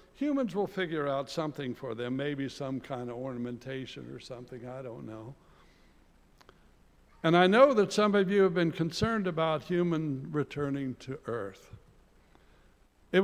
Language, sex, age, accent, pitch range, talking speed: English, male, 60-79, American, 130-180 Hz, 150 wpm